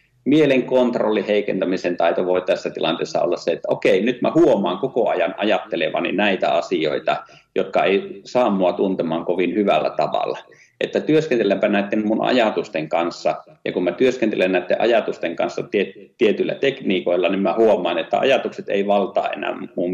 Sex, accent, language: male, native, Finnish